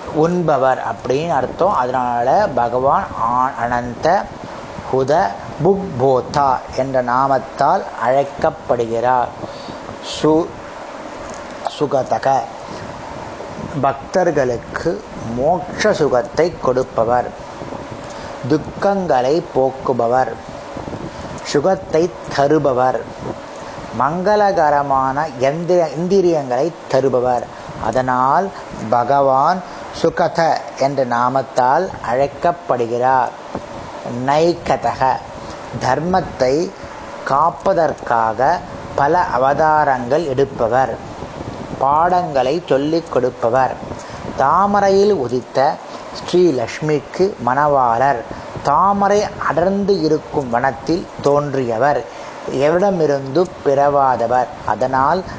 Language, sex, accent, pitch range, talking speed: Tamil, male, native, 125-170 Hz, 50 wpm